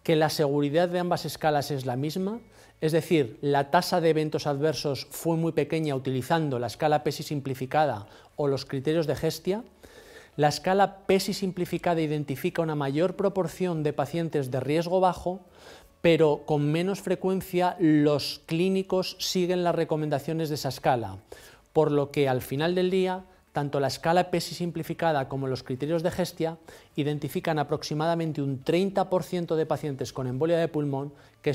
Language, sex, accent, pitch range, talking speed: English, male, Spanish, 135-170 Hz, 155 wpm